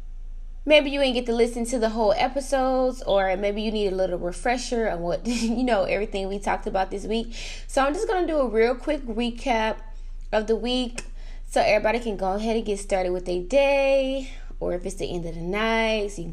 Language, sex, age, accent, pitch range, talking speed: English, female, 20-39, American, 195-250 Hz, 230 wpm